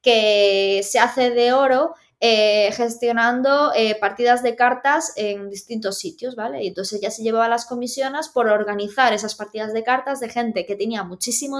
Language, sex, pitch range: Spanish, female, 205-255 Hz